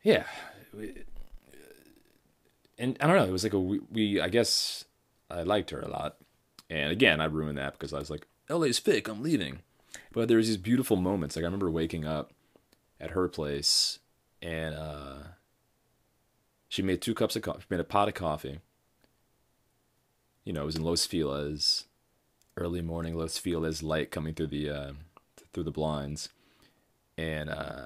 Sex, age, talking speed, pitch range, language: male, 30-49, 170 wpm, 80-115 Hz, English